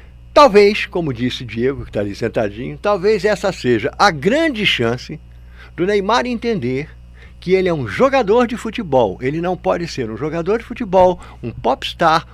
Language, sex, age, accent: Portuguese, male, 60-79, Brazilian